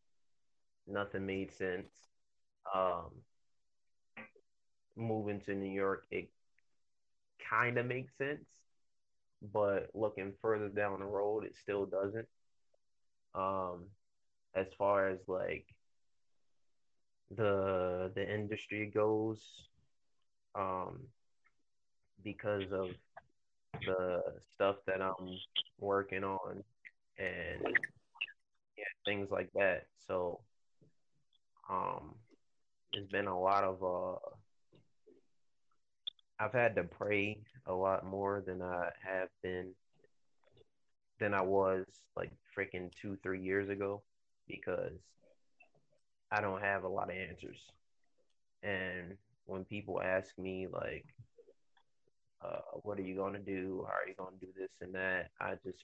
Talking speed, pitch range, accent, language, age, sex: 110 wpm, 95-105 Hz, American, English, 20-39, male